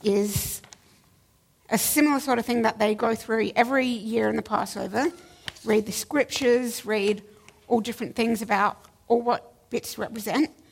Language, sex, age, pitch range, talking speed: English, female, 60-79, 200-250 Hz, 150 wpm